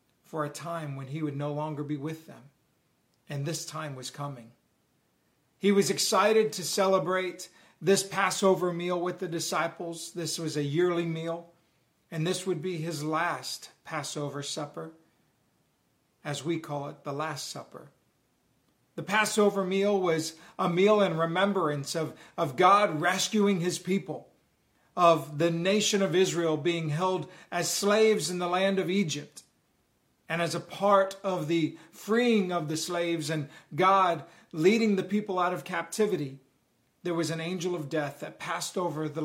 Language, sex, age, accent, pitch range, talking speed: English, male, 40-59, American, 155-190 Hz, 155 wpm